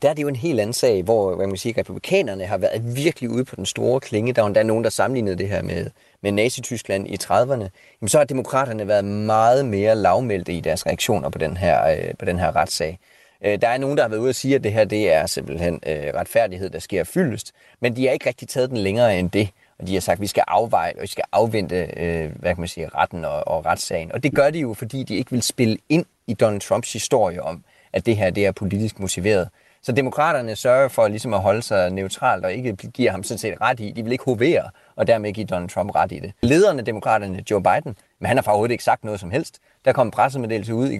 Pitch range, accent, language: 95-125 Hz, native, Danish